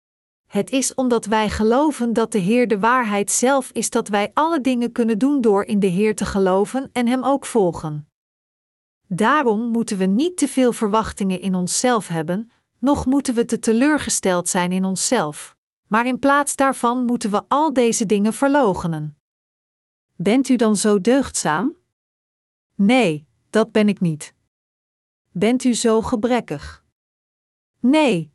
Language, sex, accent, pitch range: Dutch, female, Dutch, 195-250 Hz